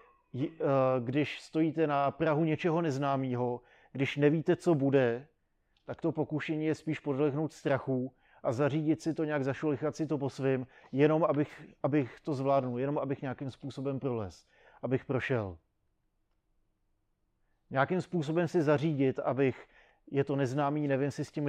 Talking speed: 140 wpm